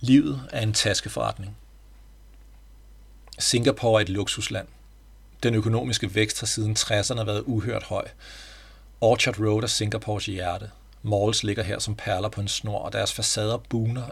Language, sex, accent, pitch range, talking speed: Danish, male, native, 95-110 Hz, 145 wpm